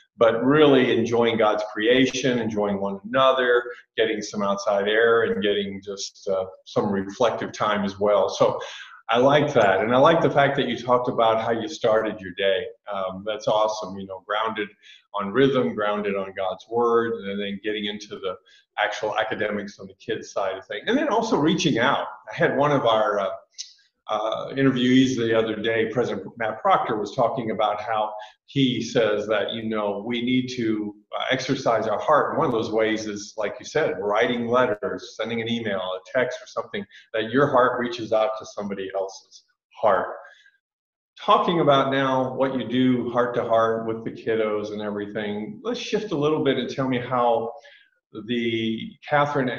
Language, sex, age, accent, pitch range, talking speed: English, male, 50-69, American, 105-130 Hz, 180 wpm